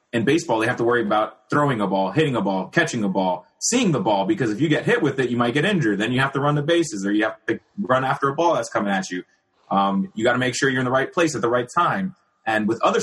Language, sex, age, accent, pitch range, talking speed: English, male, 30-49, American, 105-150 Hz, 310 wpm